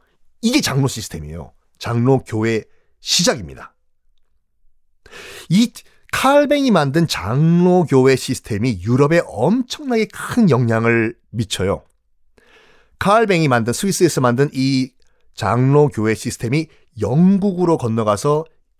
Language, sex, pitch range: Korean, male, 105-170 Hz